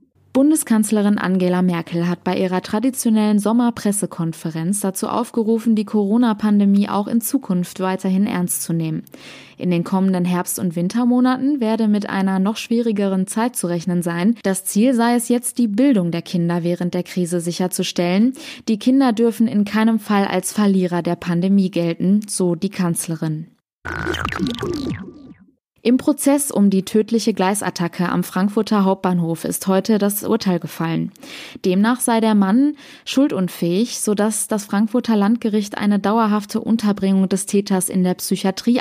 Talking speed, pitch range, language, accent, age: 140 wpm, 185-230 Hz, German, German, 20-39